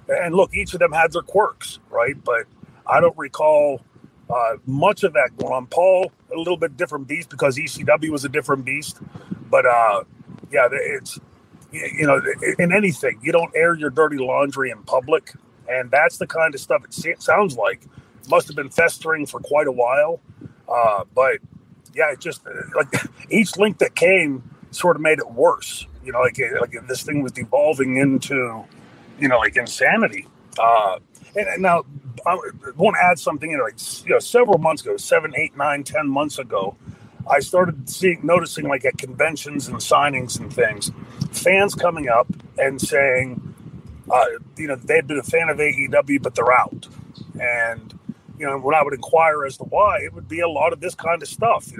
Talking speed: 195 wpm